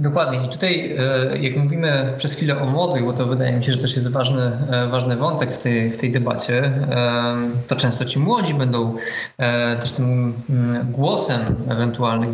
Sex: male